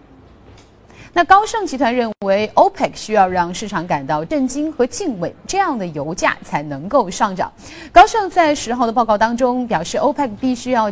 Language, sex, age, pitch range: Chinese, female, 30-49, 180-280 Hz